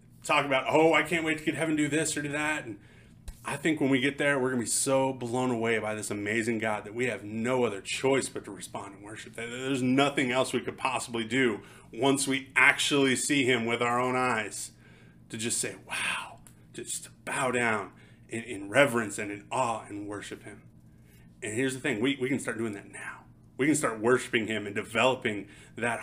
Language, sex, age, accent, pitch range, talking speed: English, male, 30-49, American, 110-135 Hz, 215 wpm